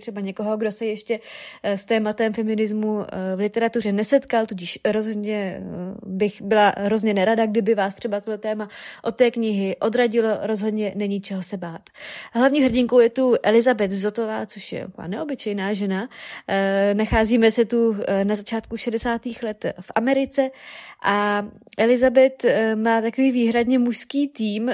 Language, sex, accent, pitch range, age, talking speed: Czech, female, native, 195-230 Hz, 20-39, 140 wpm